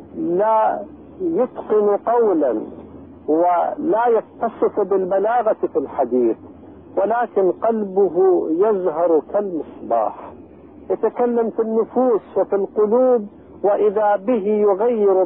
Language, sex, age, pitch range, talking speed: Arabic, male, 50-69, 165-230 Hz, 80 wpm